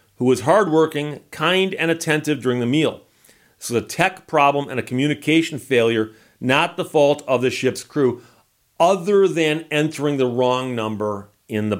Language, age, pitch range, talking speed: English, 40-59, 120-150 Hz, 165 wpm